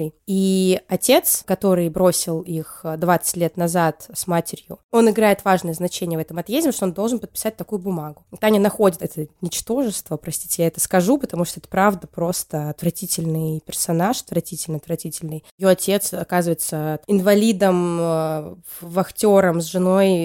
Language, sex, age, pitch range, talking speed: Russian, female, 20-39, 175-210 Hz, 140 wpm